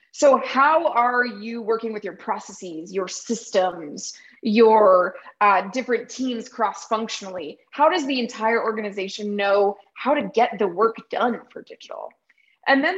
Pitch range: 210-270 Hz